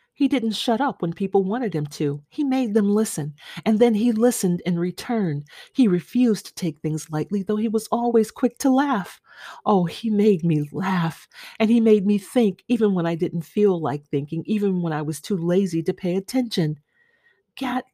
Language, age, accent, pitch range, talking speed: English, 40-59, American, 165-215 Hz, 195 wpm